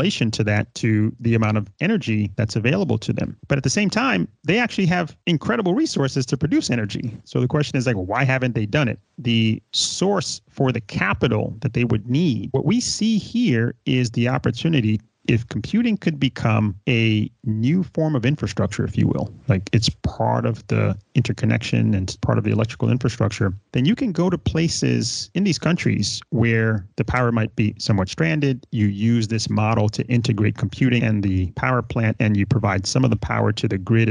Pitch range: 110-140 Hz